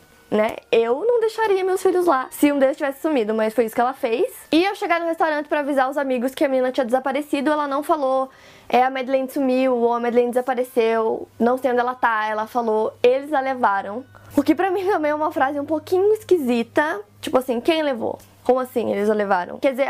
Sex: female